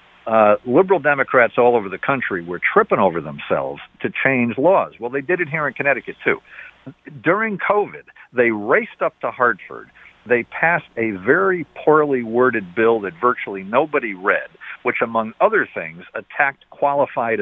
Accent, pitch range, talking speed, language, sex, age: American, 110-150 Hz, 160 wpm, English, male, 50-69